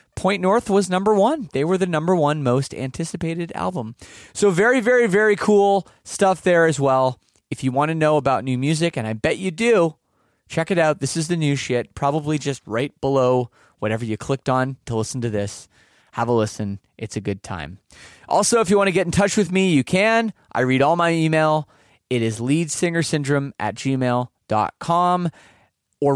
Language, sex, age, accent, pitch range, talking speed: English, male, 30-49, American, 125-165 Hz, 195 wpm